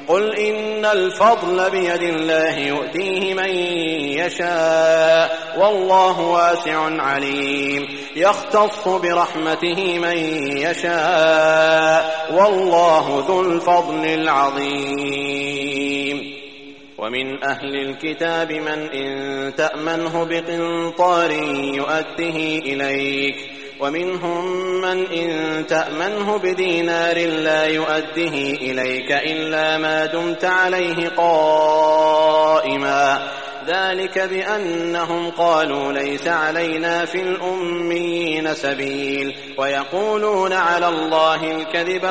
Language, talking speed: English, 75 wpm